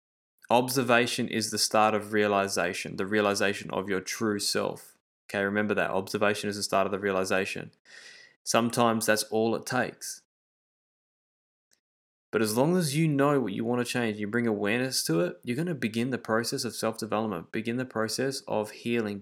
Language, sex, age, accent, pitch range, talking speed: English, male, 20-39, Australian, 105-130 Hz, 170 wpm